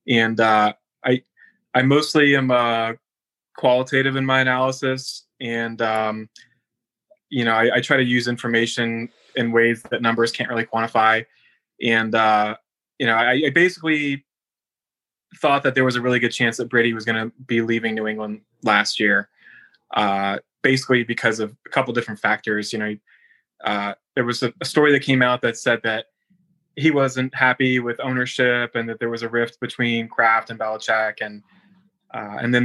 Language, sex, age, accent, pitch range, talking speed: English, male, 20-39, American, 115-130 Hz, 175 wpm